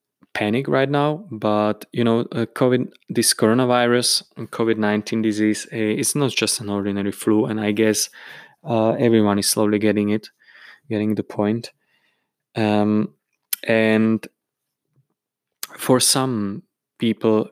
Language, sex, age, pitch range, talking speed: English, male, 20-39, 105-115 Hz, 130 wpm